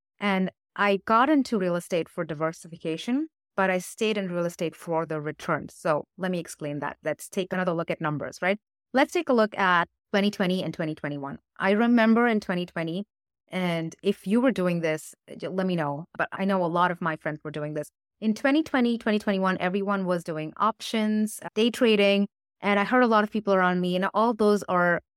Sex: female